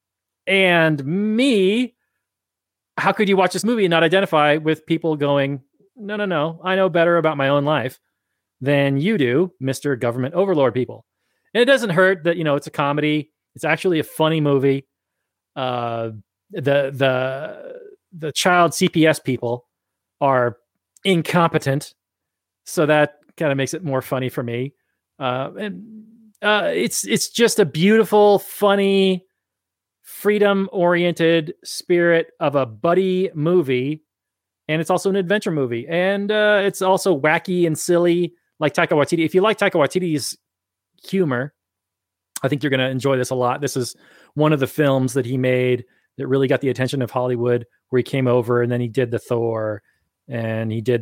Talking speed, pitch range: 165 wpm, 125-185 Hz